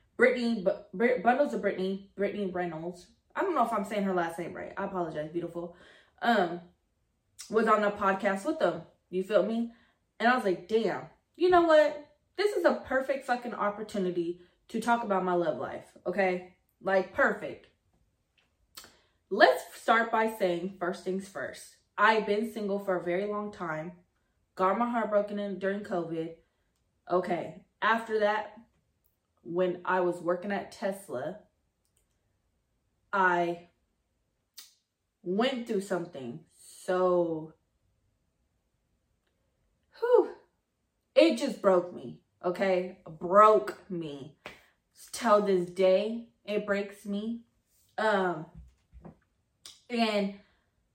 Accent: American